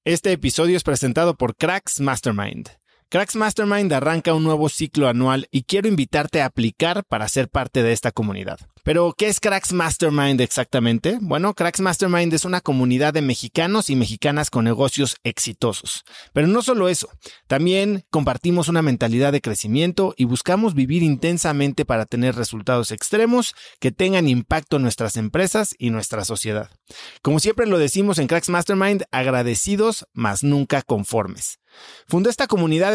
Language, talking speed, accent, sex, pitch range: Spanish, 155 wpm, Mexican, male, 125-180 Hz